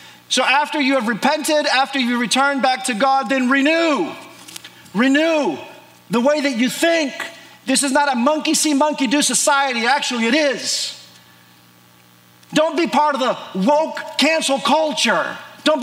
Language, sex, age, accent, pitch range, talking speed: English, male, 40-59, American, 190-295 Hz, 150 wpm